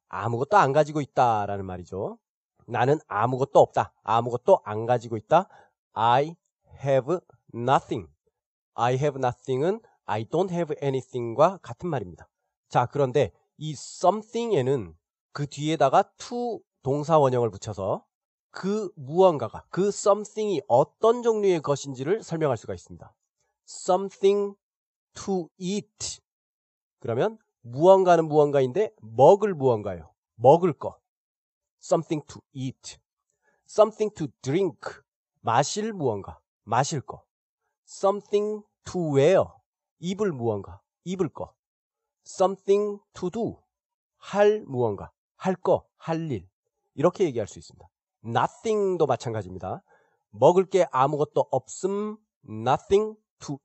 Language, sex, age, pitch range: Korean, male, 40-59, 125-195 Hz